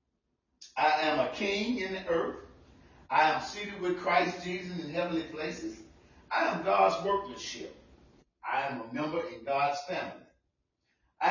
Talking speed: 145 wpm